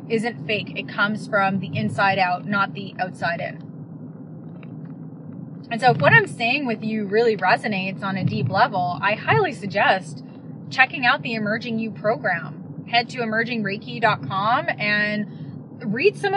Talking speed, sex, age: 150 wpm, female, 20-39